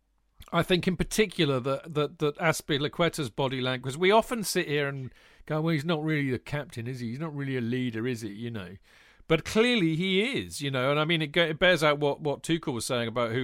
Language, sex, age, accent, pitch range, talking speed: English, male, 40-59, British, 120-160 Hz, 230 wpm